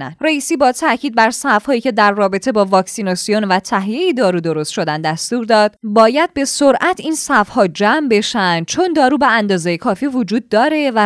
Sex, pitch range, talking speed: female, 190-270 Hz, 175 wpm